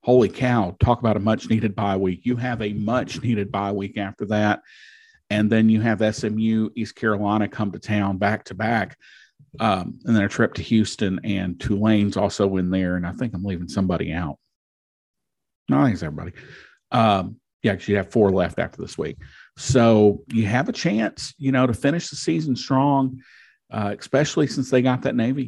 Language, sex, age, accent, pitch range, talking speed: English, male, 40-59, American, 100-125 Hz, 185 wpm